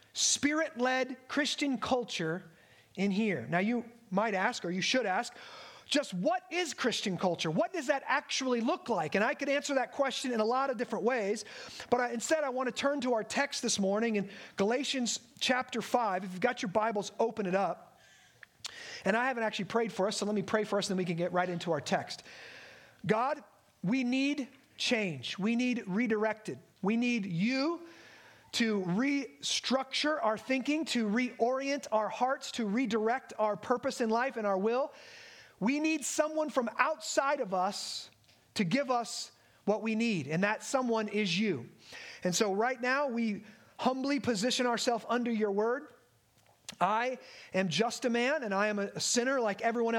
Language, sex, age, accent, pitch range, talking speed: English, male, 30-49, American, 205-260 Hz, 180 wpm